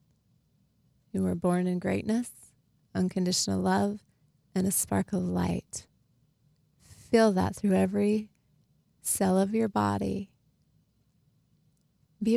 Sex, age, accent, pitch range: female, 30-49, American, 150-205 Hz